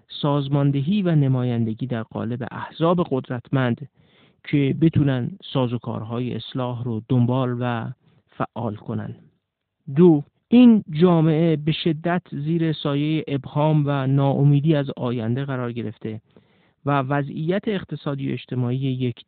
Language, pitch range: Persian, 125-155 Hz